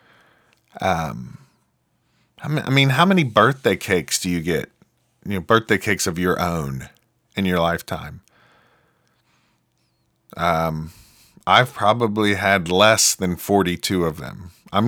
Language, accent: English, American